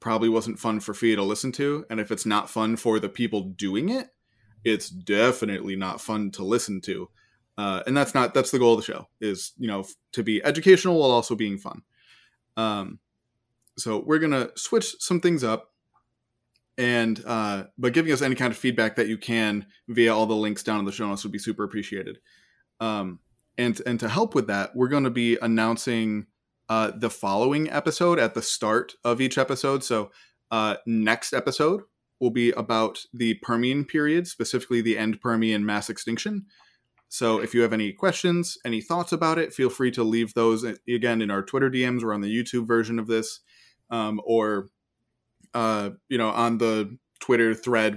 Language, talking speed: English, 190 wpm